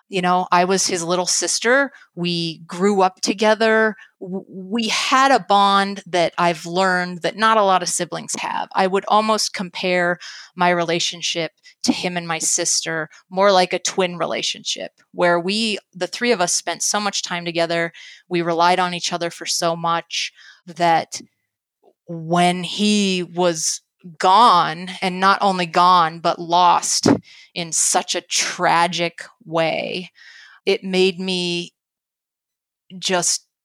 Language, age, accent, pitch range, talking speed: English, 30-49, American, 170-195 Hz, 145 wpm